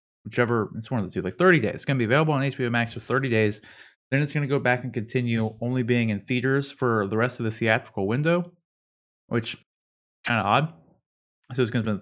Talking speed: 240 wpm